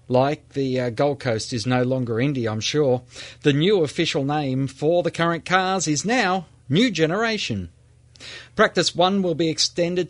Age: 40-59